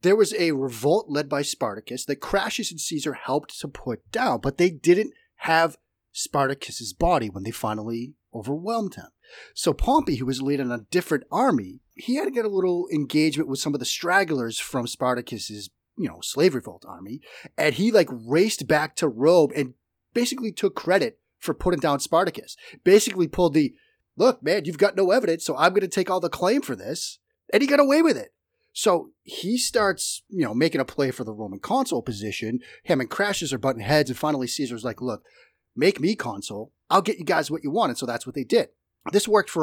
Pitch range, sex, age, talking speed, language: 125-195 Hz, male, 30-49, 205 wpm, English